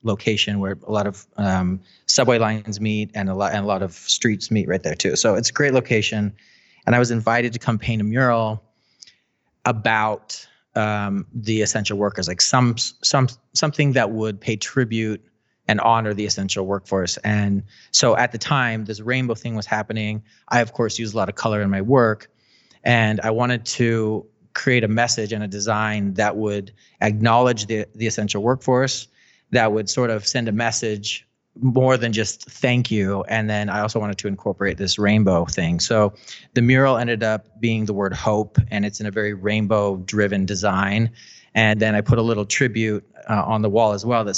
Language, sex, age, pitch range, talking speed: English, male, 30-49, 105-120 Hz, 195 wpm